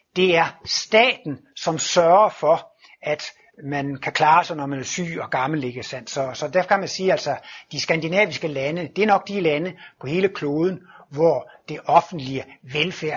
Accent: native